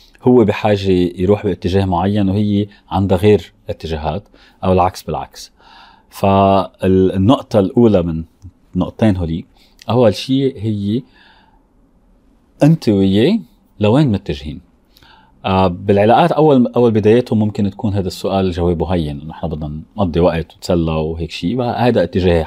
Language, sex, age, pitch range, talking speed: Arabic, male, 30-49, 90-115 Hz, 120 wpm